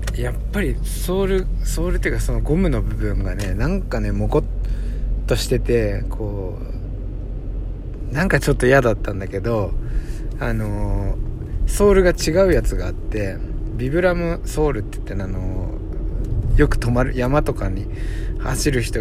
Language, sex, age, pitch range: Japanese, male, 60-79, 100-140 Hz